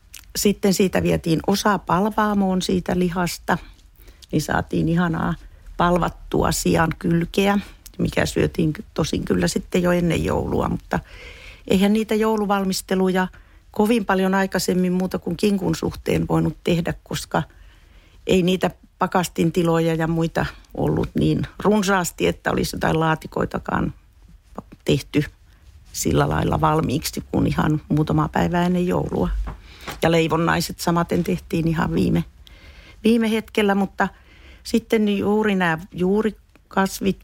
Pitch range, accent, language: 155-195 Hz, native, Finnish